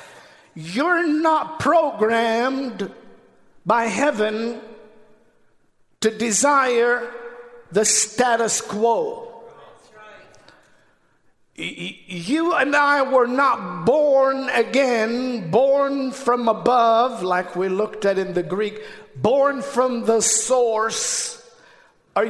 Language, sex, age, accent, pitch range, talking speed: English, male, 50-69, American, 220-275 Hz, 85 wpm